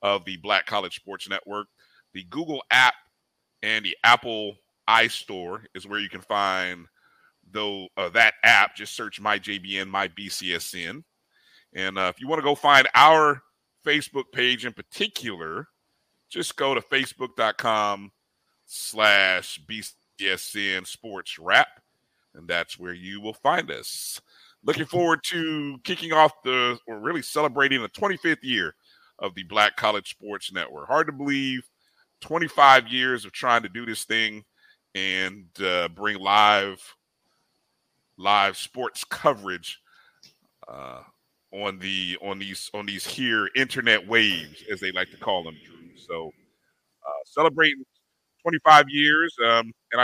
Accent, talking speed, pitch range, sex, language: American, 135 wpm, 100-135 Hz, male, English